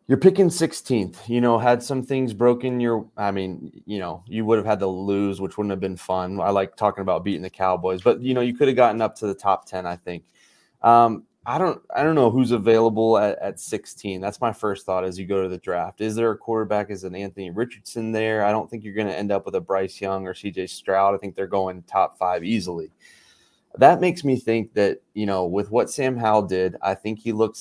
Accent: American